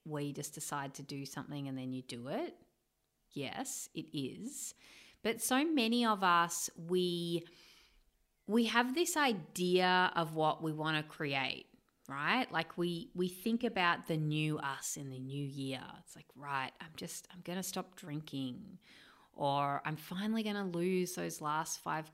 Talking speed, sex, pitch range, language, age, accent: 170 wpm, female, 150-205 Hz, English, 30-49, Australian